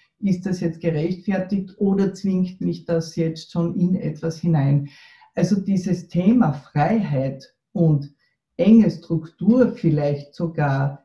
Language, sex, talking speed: German, female, 120 wpm